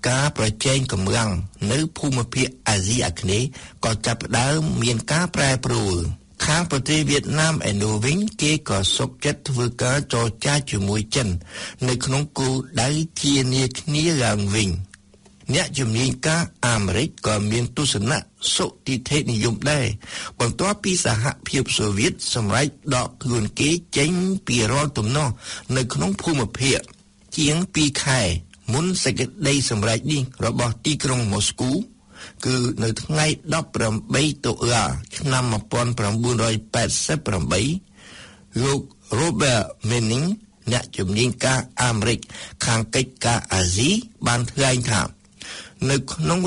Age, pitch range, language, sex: 60-79, 110-145 Hz, English, male